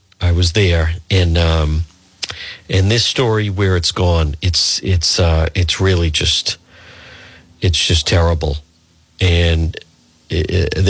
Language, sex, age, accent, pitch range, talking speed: English, male, 50-69, American, 85-105 Hz, 120 wpm